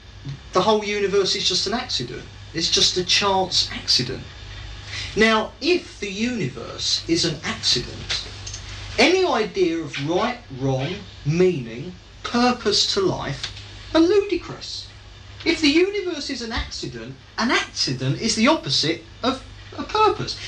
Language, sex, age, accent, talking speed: English, male, 40-59, British, 130 wpm